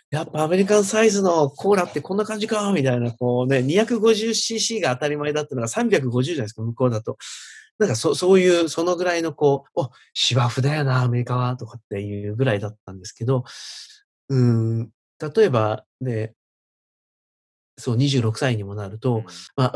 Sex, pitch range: male, 115-165 Hz